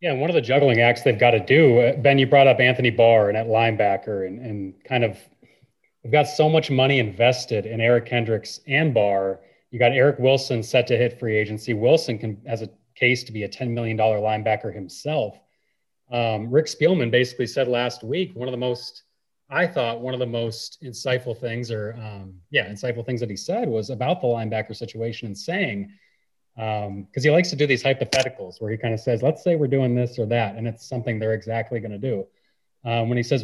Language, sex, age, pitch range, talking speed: English, male, 30-49, 115-135 Hz, 220 wpm